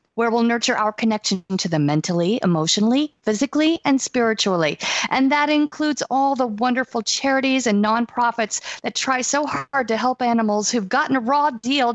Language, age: English, 50-69